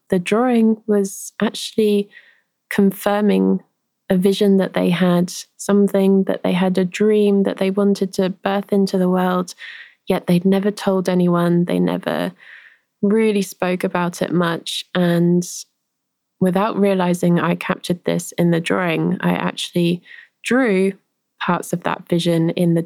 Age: 20-39